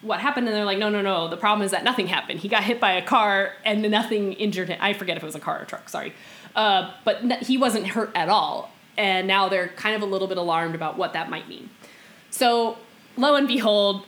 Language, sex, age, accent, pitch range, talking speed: English, female, 10-29, American, 180-230 Hz, 255 wpm